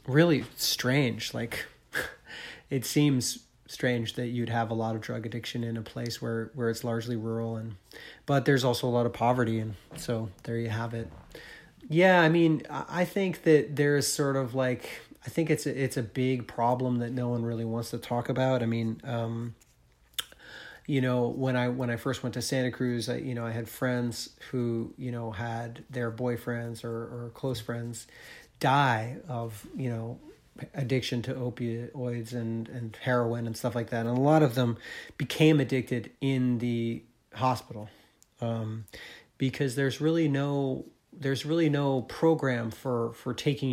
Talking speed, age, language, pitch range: 175 wpm, 30-49, English, 115-135 Hz